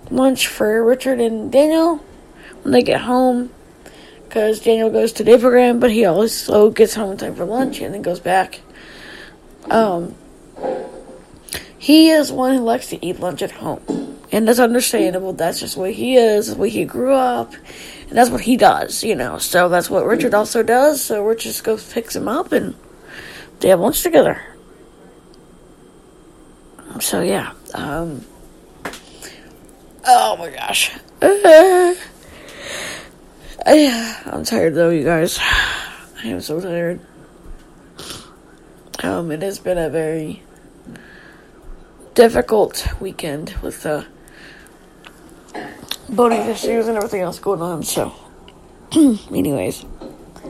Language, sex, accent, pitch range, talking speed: English, female, American, 195-260 Hz, 135 wpm